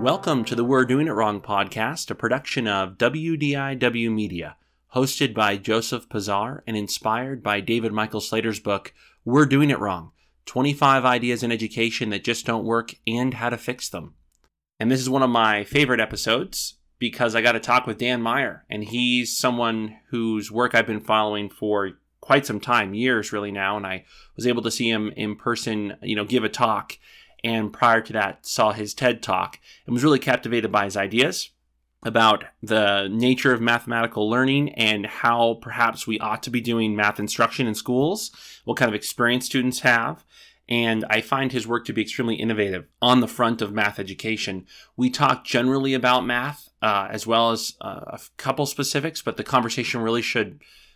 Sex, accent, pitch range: male, American, 105-125 Hz